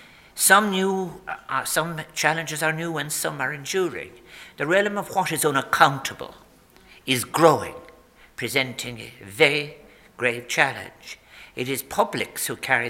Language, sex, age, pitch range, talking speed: English, male, 60-79, 130-165 Hz, 135 wpm